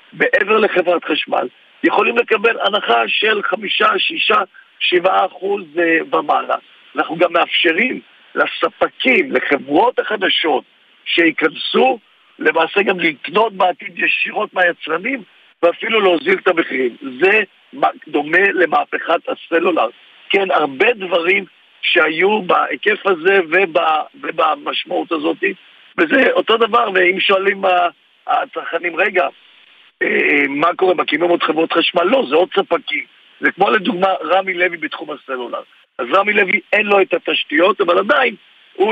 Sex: male